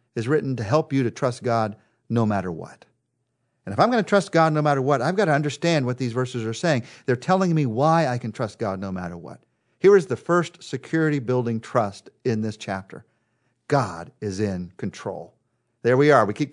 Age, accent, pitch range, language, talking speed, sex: 50-69, American, 115-165 Hz, English, 215 wpm, male